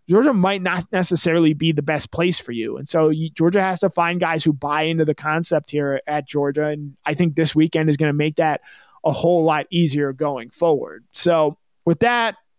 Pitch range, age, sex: 150-175 Hz, 20-39, male